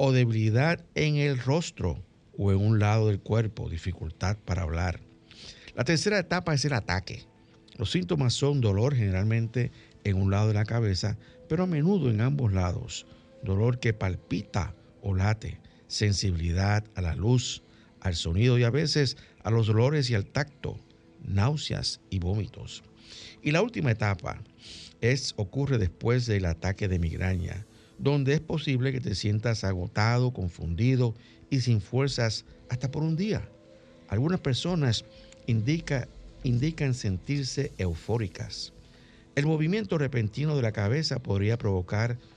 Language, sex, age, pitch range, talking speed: Spanish, male, 60-79, 100-135 Hz, 140 wpm